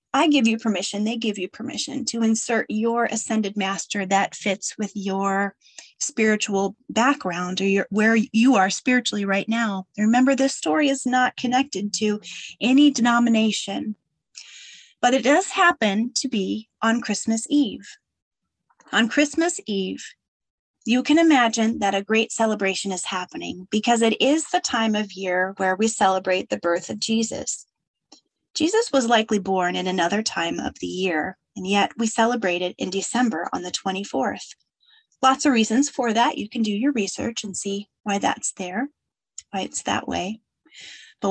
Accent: American